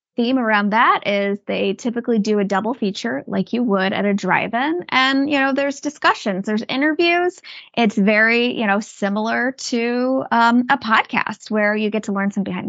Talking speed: 185 wpm